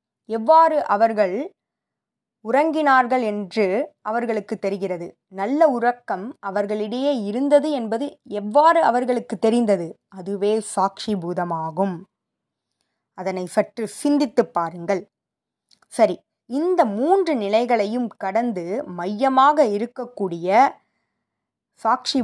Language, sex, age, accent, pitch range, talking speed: Tamil, female, 20-39, native, 190-235 Hz, 80 wpm